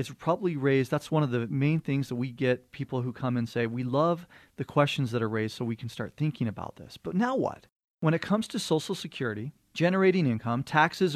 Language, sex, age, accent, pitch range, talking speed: English, male, 40-59, American, 125-170 Hz, 230 wpm